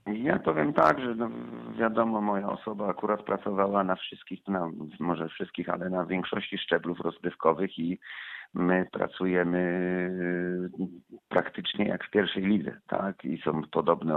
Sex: male